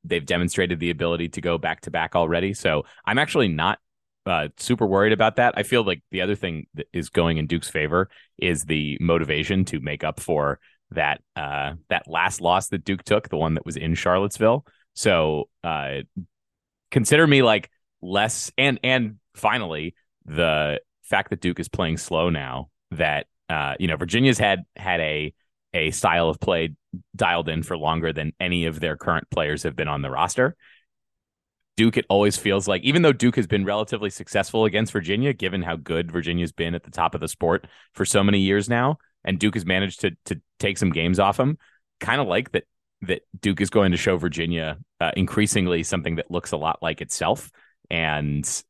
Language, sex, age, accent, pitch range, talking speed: English, male, 30-49, American, 85-110 Hz, 195 wpm